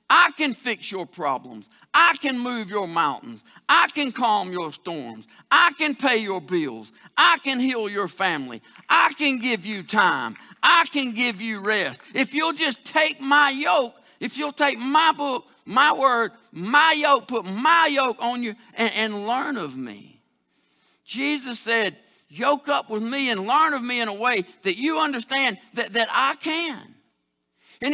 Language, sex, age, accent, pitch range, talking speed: English, male, 50-69, American, 205-290 Hz, 175 wpm